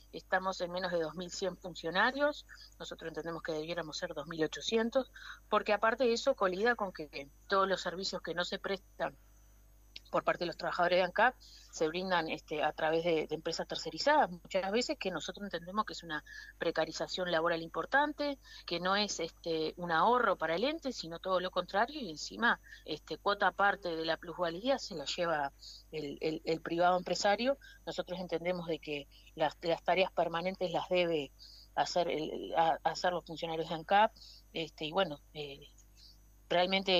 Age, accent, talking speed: 30-49, Argentinian, 170 wpm